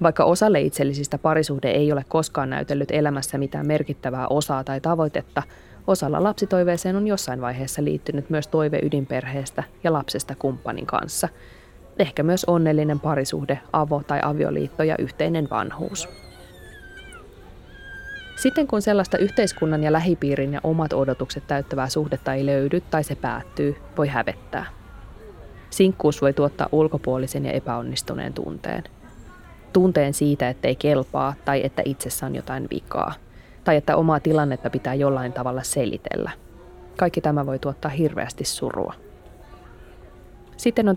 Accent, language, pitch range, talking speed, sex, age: native, Finnish, 130-160 Hz, 130 wpm, female, 20-39